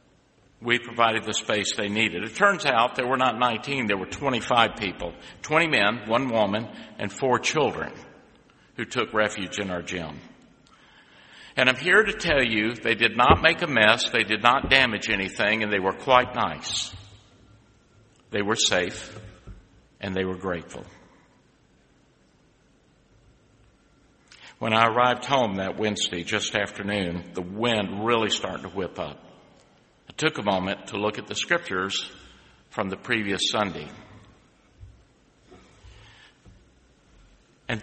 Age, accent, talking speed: 60-79, American, 140 wpm